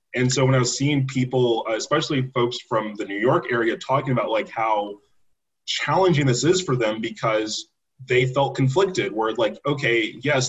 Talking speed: 175 wpm